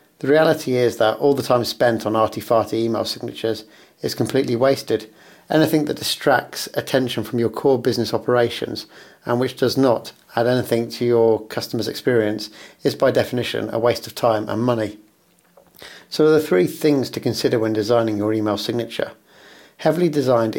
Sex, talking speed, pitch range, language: male, 170 wpm, 110-135 Hz, English